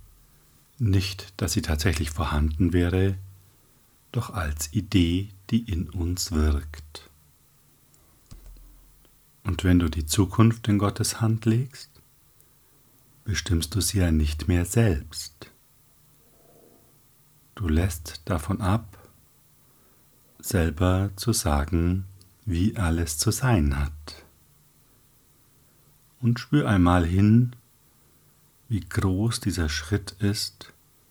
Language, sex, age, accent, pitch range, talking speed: German, male, 60-79, German, 85-105 Hz, 95 wpm